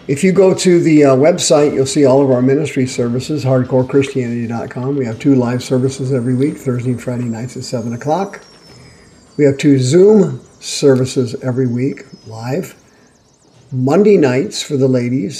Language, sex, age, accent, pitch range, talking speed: English, male, 50-69, American, 130-145 Hz, 165 wpm